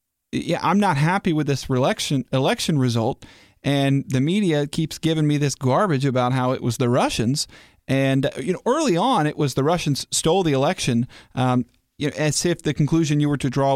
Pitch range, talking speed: 125-150 Hz, 200 wpm